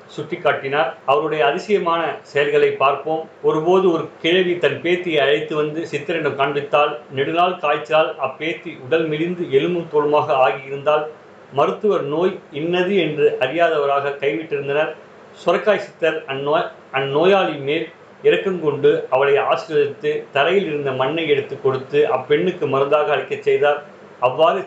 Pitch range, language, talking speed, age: 145-185 Hz, Tamil, 115 wpm, 50-69